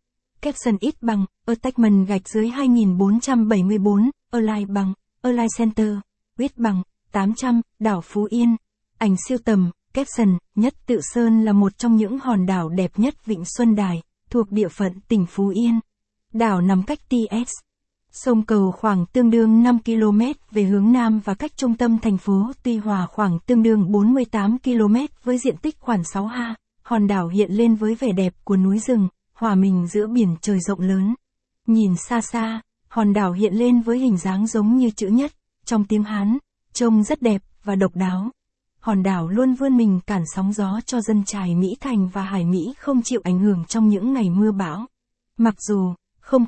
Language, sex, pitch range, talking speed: Vietnamese, female, 200-235 Hz, 185 wpm